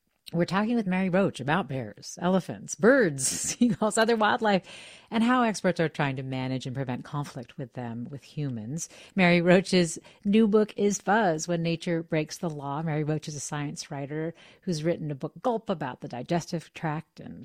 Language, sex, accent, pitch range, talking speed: English, female, American, 140-200 Hz, 180 wpm